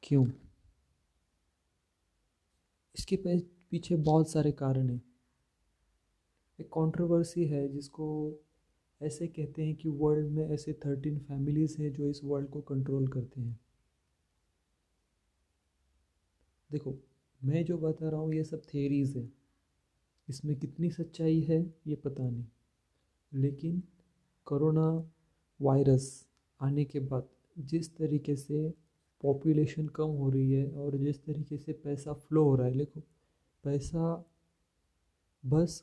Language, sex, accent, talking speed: Hindi, male, native, 120 wpm